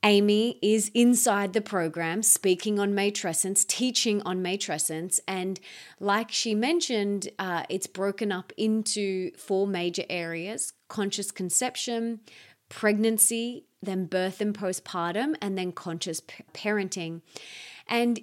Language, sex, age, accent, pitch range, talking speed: English, female, 30-49, Australian, 180-220 Hz, 120 wpm